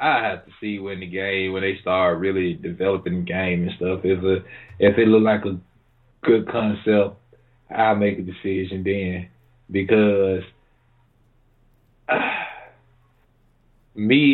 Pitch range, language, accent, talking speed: 105-130 Hz, English, American, 140 wpm